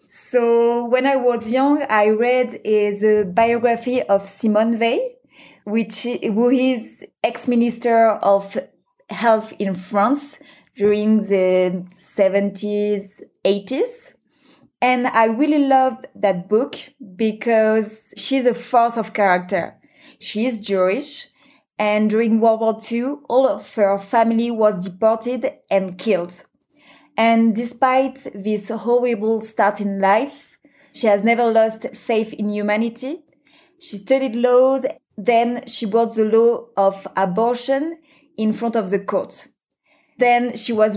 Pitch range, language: 210-255 Hz, English